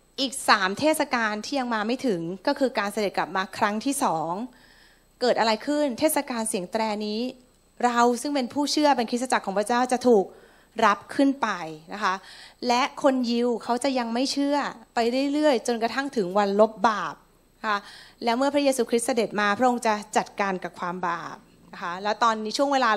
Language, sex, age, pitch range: Thai, female, 30-49, 215-275 Hz